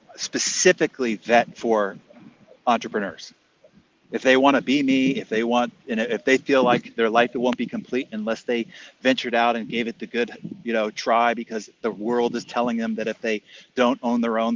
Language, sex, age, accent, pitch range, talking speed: English, male, 40-59, American, 115-140 Hz, 200 wpm